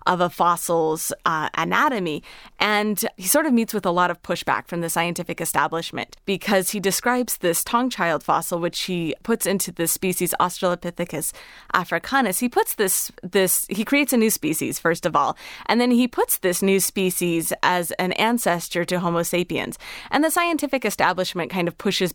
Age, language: 30-49, English